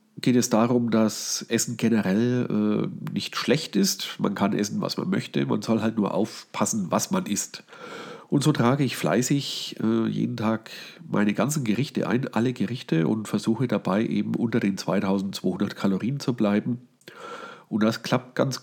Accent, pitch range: German, 105-135 Hz